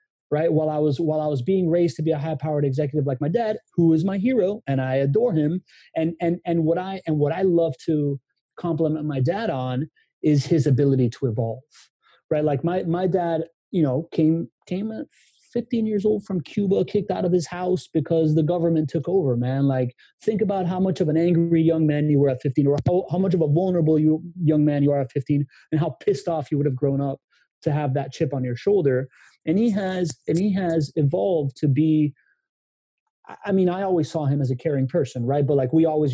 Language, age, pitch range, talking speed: English, 30-49, 140-180 Hz, 230 wpm